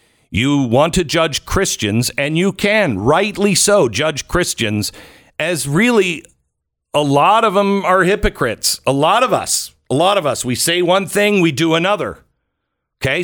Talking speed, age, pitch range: 165 wpm, 50-69, 115-175 Hz